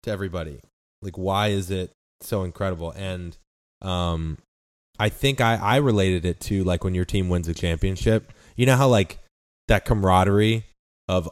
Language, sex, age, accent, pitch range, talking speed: English, male, 20-39, American, 90-110 Hz, 165 wpm